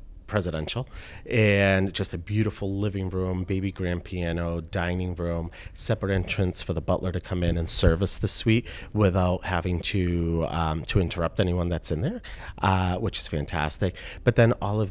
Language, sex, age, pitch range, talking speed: English, male, 30-49, 85-105 Hz, 170 wpm